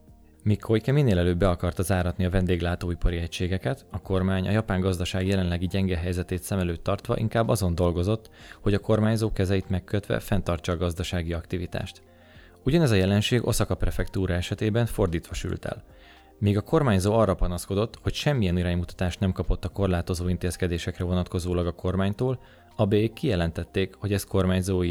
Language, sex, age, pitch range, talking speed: Hungarian, male, 20-39, 90-105 Hz, 150 wpm